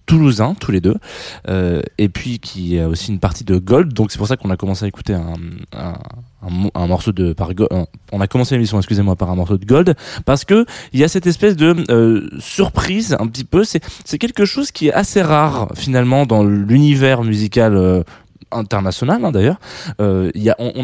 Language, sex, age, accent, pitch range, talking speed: French, male, 20-39, French, 100-130 Hz, 215 wpm